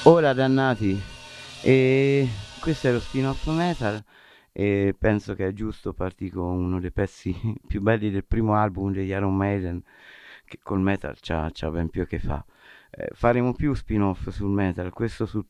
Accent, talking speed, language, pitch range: native, 175 wpm, Italian, 90-115 Hz